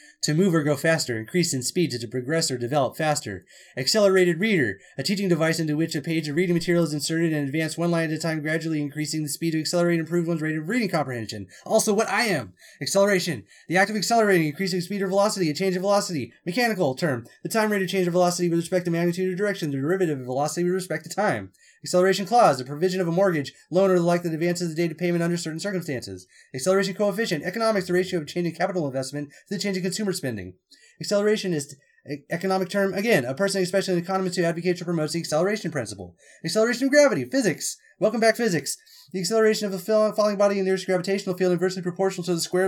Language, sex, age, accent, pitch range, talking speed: English, male, 30-49, American, 160-200 Hz, 230 wpm